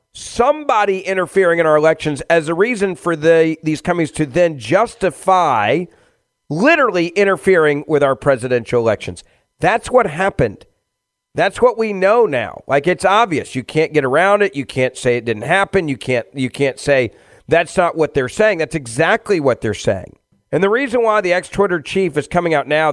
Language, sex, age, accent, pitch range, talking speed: English, male, 40-59, American, 140-190 Hz, 185 wpm